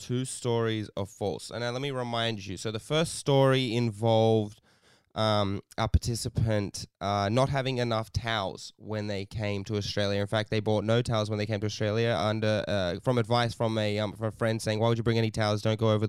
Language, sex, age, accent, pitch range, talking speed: English, male, 20-39, Australian, 105-120 Hz, 220 wpm